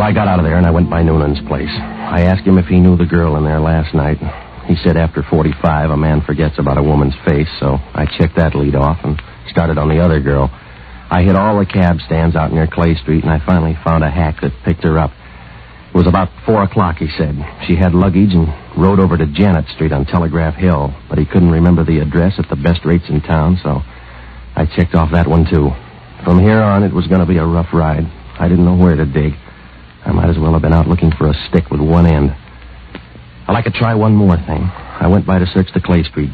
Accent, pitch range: American, 75-90 Hz